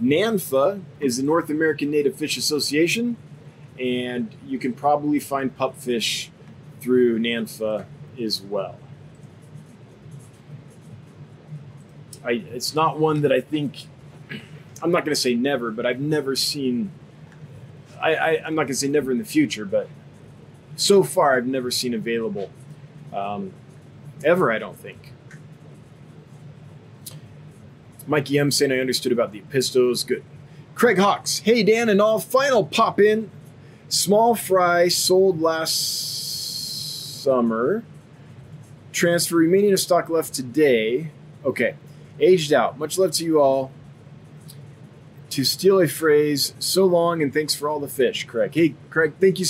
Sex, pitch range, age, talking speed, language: male, 140-160 Hz, 20-39, 130 wpm, English